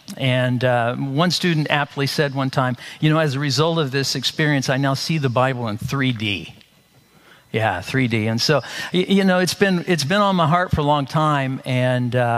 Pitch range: 130-160 Hz